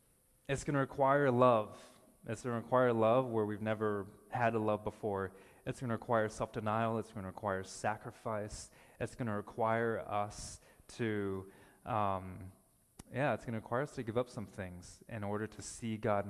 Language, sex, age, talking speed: English, male, 20-39, 185 wpm